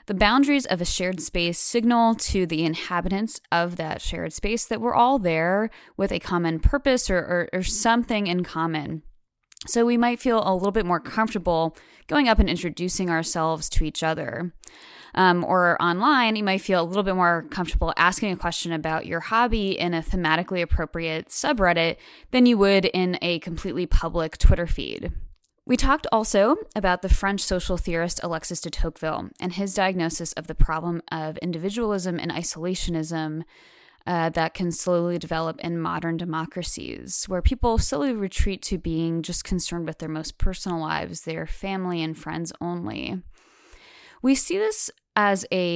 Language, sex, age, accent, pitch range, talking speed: English, female, 10-29, American, 165-205 Hz, 170 wpm